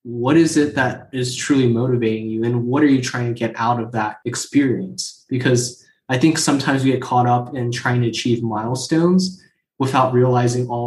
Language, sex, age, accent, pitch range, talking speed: English, male, 20-39, American, 115-130 Hz, 195 wpm